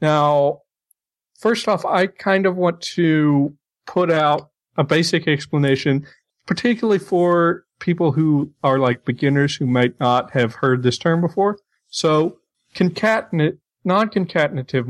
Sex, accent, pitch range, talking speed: male, American, 135-170 Hz, 120 wpm